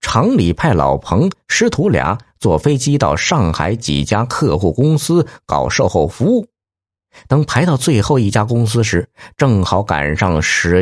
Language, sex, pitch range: Chinese, male, 95-145 Hz